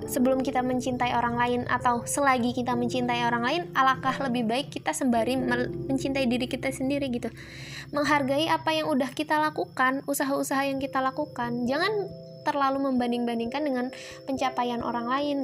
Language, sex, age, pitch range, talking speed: Indonesian, female, 20-39, 235-285 Hz, 150 wpm